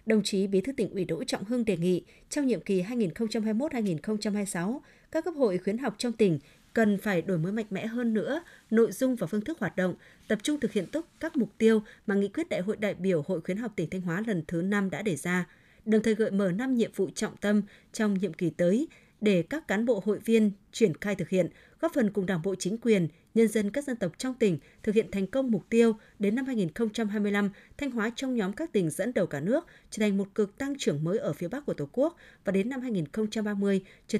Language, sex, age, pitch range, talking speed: Vietnamese, female, 20-39, 185-230 Hz, 240 wpm